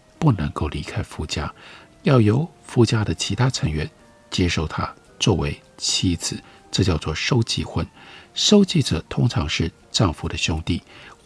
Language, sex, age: Chinese, male, 50-69